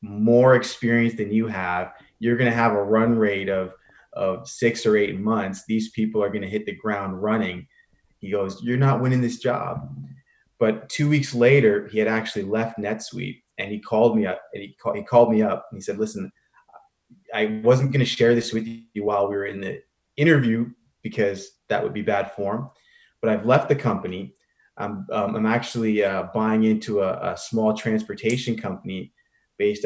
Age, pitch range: 30-49, 105-125 Hz